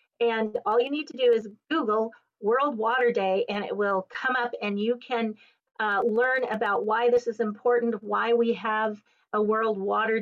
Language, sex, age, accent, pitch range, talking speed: English, female, 40-59, American, 210-235 Hz, 190 wpm